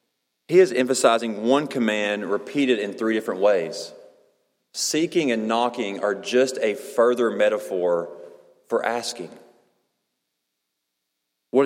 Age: 30-49